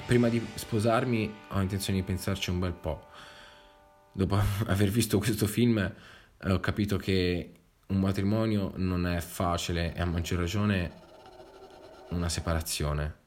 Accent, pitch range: native, 90-115 Hz